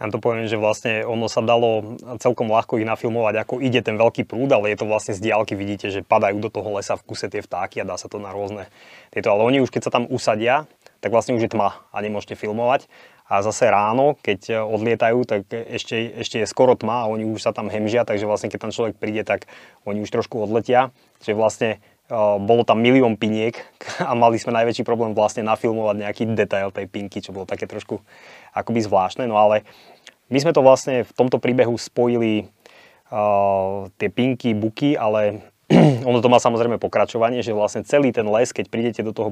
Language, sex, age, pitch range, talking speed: Slovak, male, 20-39, 105-120 Hz, 210 wpm